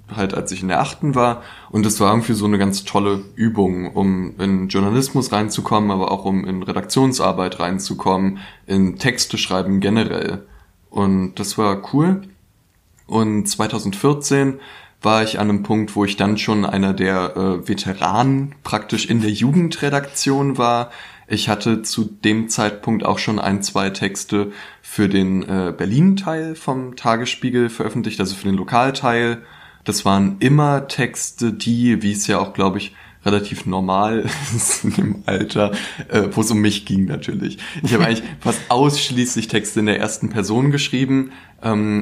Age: 20-39